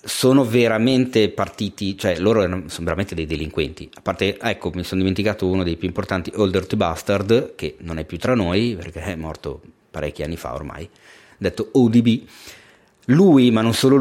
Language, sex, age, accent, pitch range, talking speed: Italian, male, 30-49, native, 80-105 Hz, 175 wpm